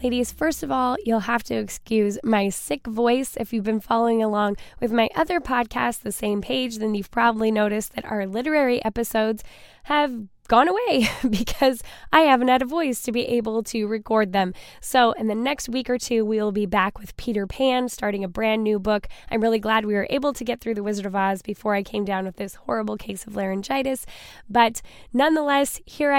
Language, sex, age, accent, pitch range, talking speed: English, female, 10-29, American, 215-260 Hz, 205 wpm